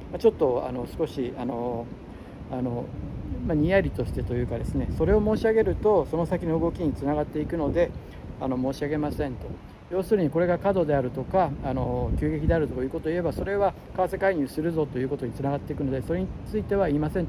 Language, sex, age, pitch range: Japanese, male, 60-79, 130-175 Hz